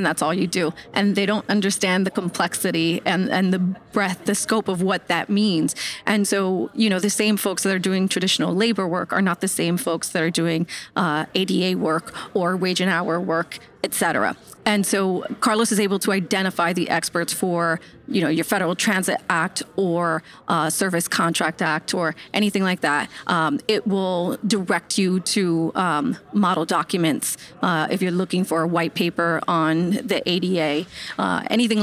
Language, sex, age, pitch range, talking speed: English, female, 30-49, 175-205 Hz, 185 wpm